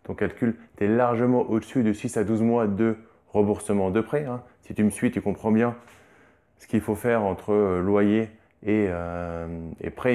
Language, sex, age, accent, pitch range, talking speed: French, male, 20-39, French, 110-135 Hz, 195 wpm